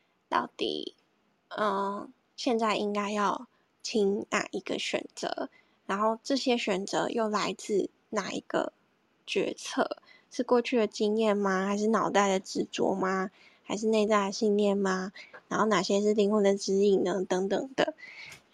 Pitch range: 195-225 Hz